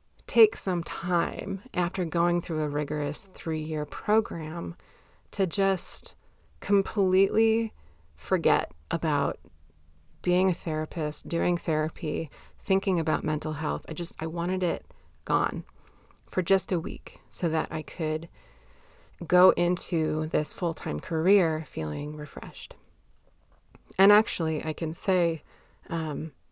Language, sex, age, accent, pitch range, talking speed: English, female, 30-49, American, 150-180 Hz, 115 wpm